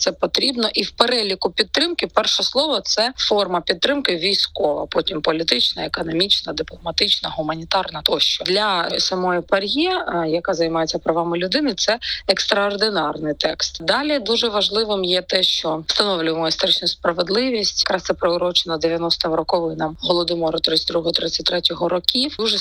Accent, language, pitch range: native, Ukrainian, 170-220 Hz